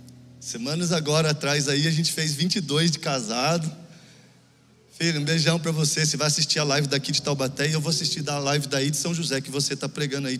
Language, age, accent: Portuguese, 20-39, Brazilian